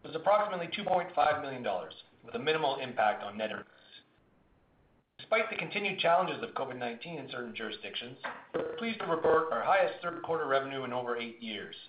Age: 40-59